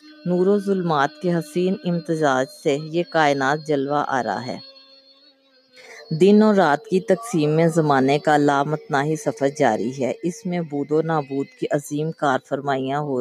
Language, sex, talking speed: Urdu, female, 155 wpm